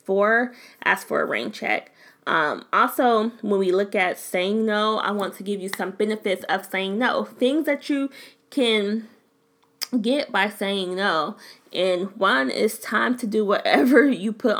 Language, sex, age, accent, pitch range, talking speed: English, female, 20-39, American, 195-235 Hz, 170 wpm